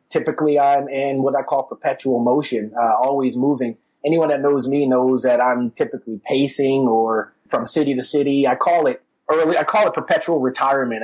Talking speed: 185 wpm